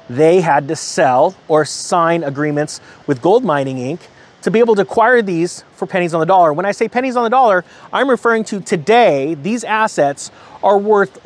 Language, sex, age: English, male, 30-49